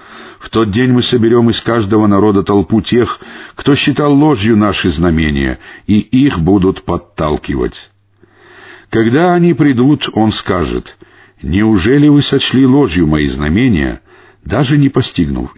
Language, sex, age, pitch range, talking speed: Russian, male, 50-69, 90-120 Hz, 125 wpm